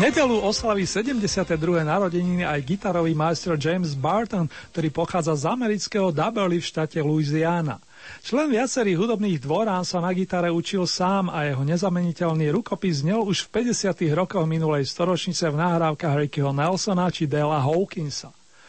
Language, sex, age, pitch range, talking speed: Slovak, male, 40-59, 160-195 Hz, 140 wpm